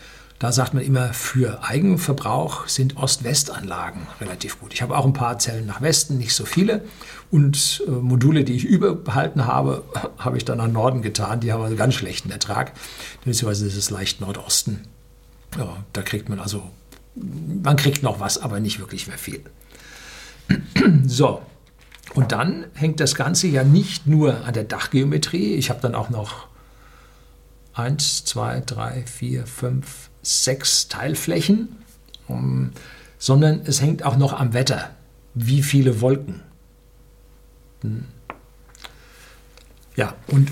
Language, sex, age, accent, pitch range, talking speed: German, male, 60-79, German, 120-145 Hz, 140 wpm